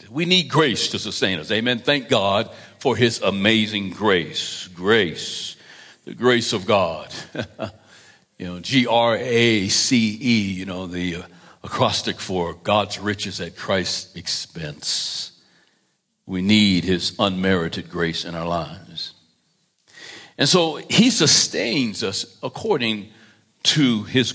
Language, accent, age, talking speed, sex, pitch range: English, American, 60-79, 120 wpm, male, 95-115 Hz